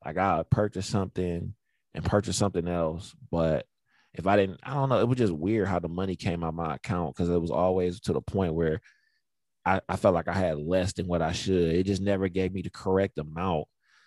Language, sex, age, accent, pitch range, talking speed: English, male, 20-39, American, 85-100 Hz, 240 wpm